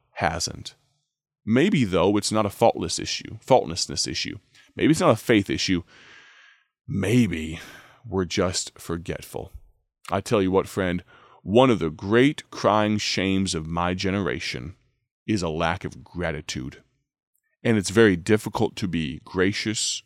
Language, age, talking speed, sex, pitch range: English, 30-49, 140 wpm, male, 95-120 Hz